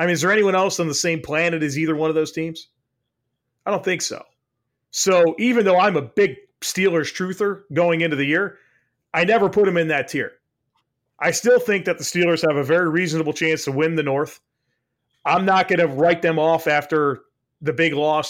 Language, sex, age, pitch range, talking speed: English, male, 30-49, 140-175 Hz, 215 wpm